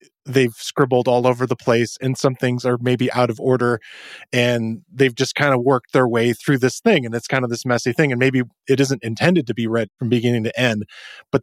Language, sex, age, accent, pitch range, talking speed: English, male, 20-39, American, 115-140 Hz, 235 wpm